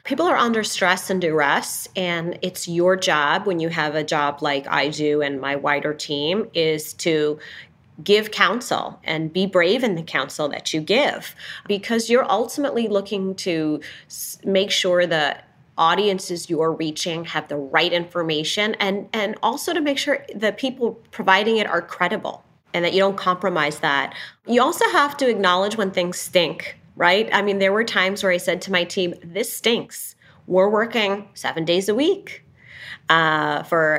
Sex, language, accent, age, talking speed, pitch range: female, English, American, 30-49, 175 wpm, 160-210 Hz